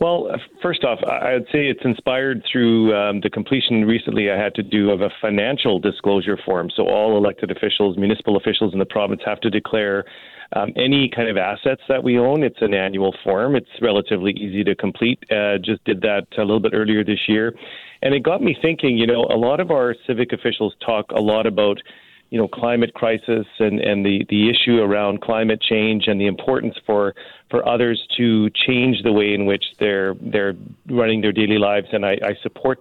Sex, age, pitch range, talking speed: male, 40-59, 105-120 Hz, 205 wpm